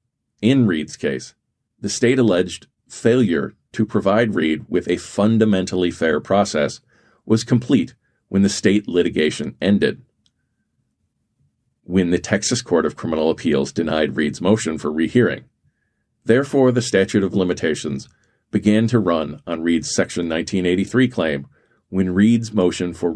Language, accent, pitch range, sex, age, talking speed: English, American, 90-120 Hz, male, 40-59, 130 wpm